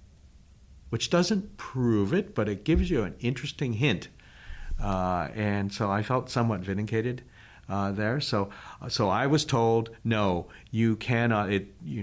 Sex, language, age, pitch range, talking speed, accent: male, English, 50-69, 95-110 Hz, 150 wpm, American